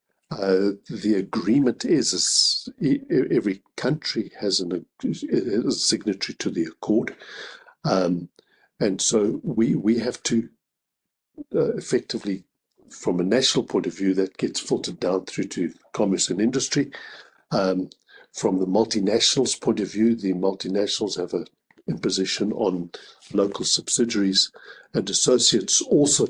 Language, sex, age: English, male, 60-79